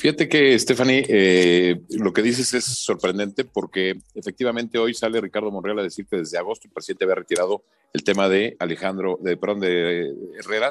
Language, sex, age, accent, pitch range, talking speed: Spanish, male, 50-69, Mexican, 95-140 Hz, 180 wpm